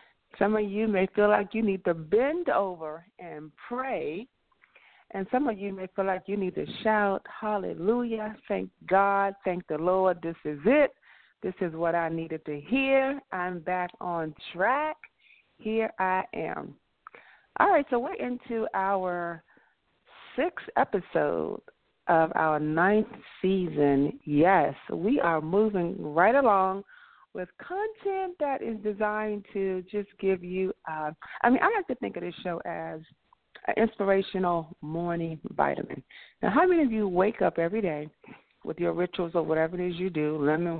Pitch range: 165-210 Hz